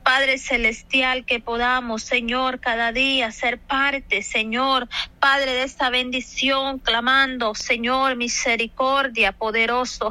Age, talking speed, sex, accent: 30-49, 105 wpm, female, American